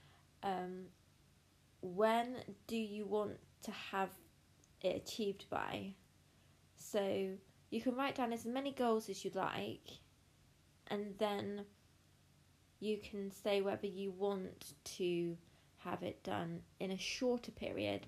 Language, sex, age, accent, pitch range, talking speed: English, female, 20-39, British, 170-205 Hz, 125 wpm